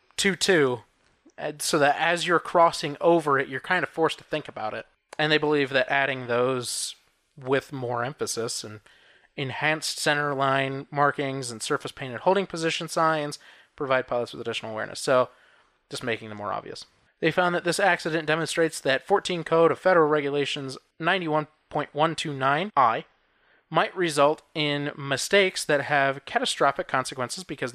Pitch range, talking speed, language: 130-175 Hz, 150 wpm, English